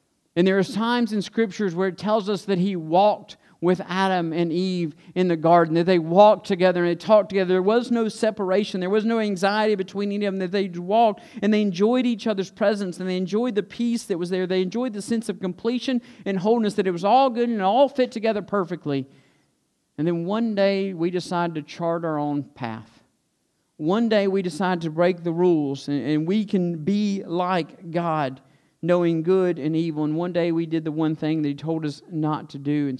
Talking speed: 220 wpm